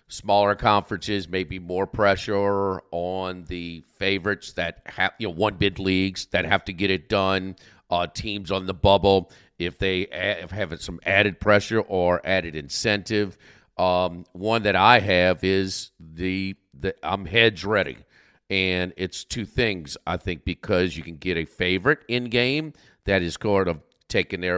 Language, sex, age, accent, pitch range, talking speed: English, male, 50-69, American, 90-110 Hz, 160 wpm